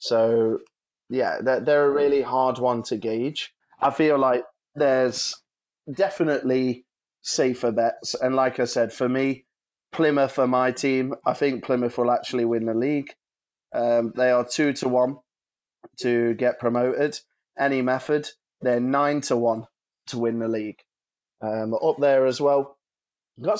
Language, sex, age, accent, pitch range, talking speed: English, male, 20-39, British, 115-135 Hz, 150 wpm